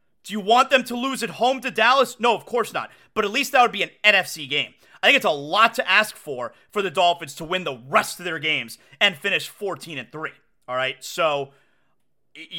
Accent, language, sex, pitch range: American, English, male, 170-245 Hz